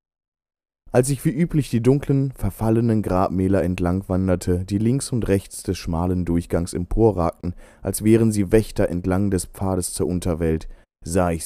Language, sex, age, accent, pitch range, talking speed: German, male, 30-49, German, 85-100 Hz, 150 wpm